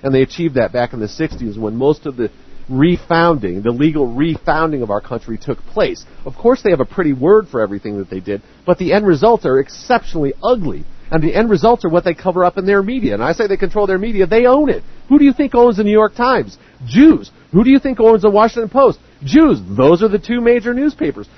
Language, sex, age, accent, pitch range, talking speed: English, male, 40-59, American, 155-215 Hz, 245 wpm